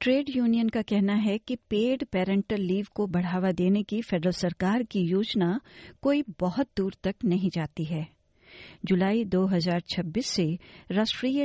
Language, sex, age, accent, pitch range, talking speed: English, female, 50-69, Indian, 170-215 Hz, 145 wpm